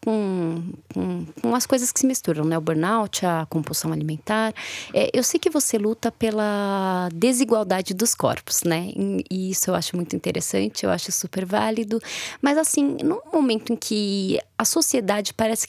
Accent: Brazilian